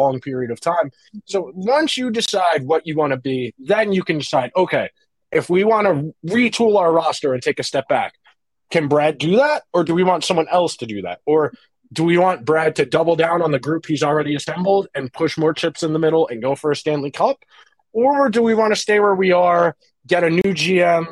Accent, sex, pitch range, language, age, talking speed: American, male, 140-180 Hz, English, 20-39, 235 wpm